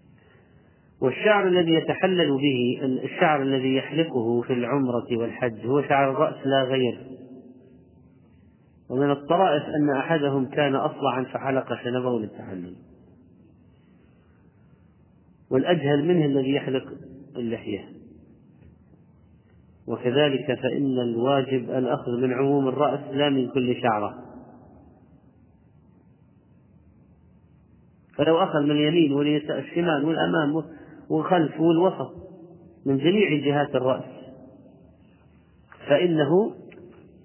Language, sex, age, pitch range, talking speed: Arabic, male, 40-59, 130-160 Hz, 85 wpm